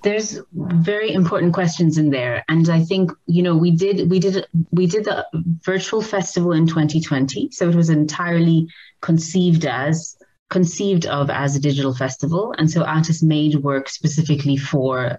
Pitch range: 150-175 Hz